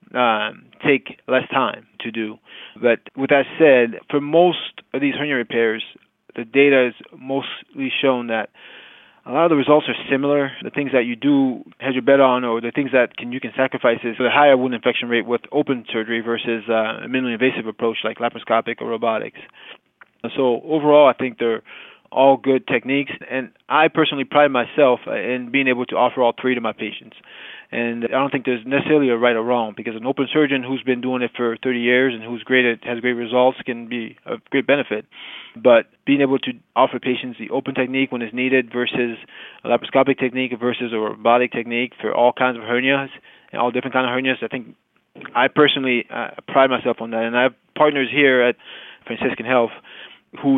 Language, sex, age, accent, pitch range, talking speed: English, male, 20-39, American, 120-135 Hz, 205 wpm